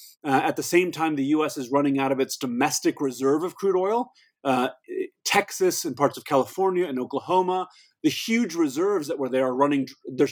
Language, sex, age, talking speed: English, male, 30-49, 185 wpm